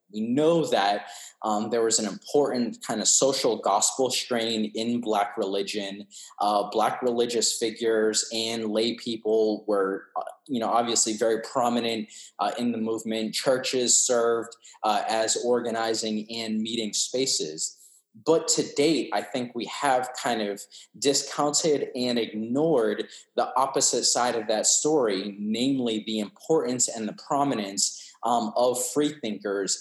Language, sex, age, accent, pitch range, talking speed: English, male, 20-39, American, 110-125 Hz, 140 wpm